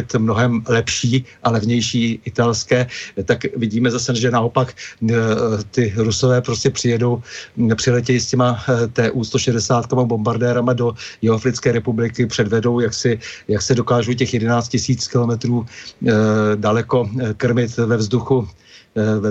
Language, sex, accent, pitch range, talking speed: Czech, male, native, 110-130 Hz, 120 wpm